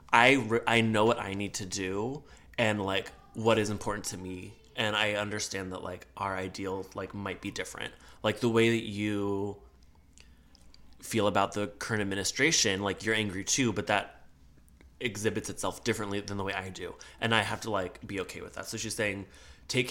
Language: English